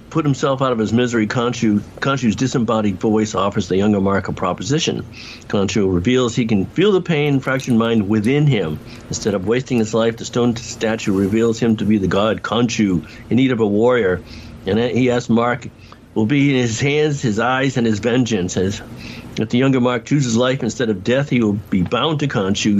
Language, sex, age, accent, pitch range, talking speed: English, male, 60-79, American, 110-125 Hz, 205 wpm